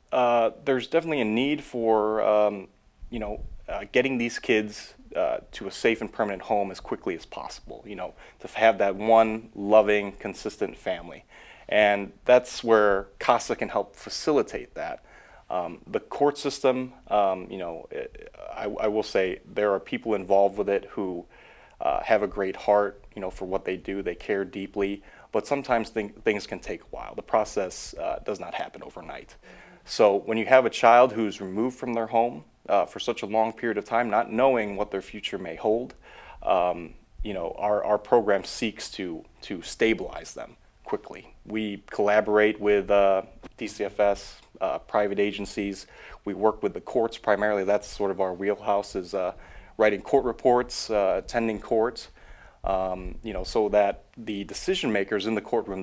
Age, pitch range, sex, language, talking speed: 30-49, 100-115 Hz, male, English, 175 wpm